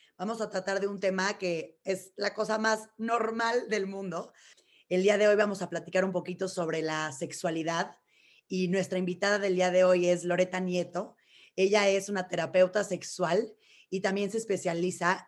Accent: Mexican